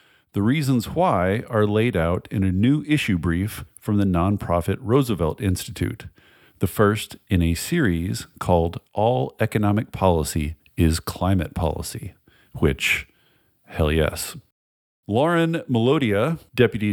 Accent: American